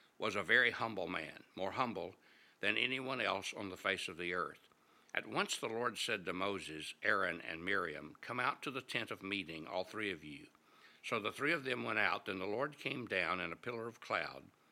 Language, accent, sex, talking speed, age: English, American, male, 220 wpm, 60-79